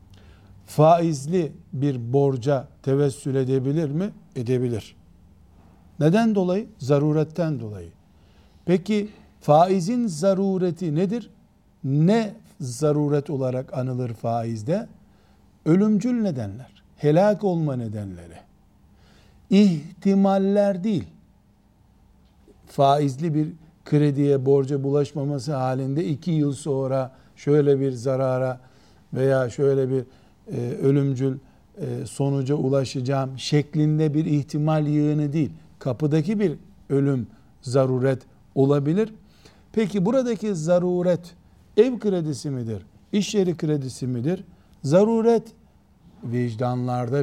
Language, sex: Turkish, male